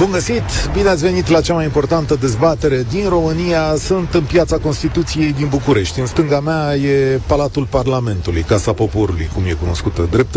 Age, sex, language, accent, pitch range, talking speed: 40-59, male, Romanian, native, 110-180 Hz, 160 wpm